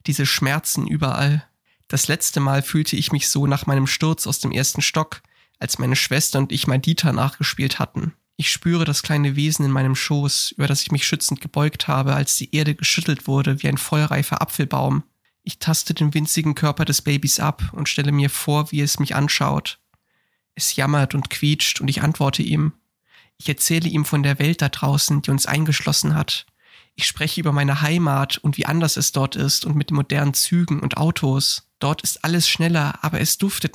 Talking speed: 195 wpm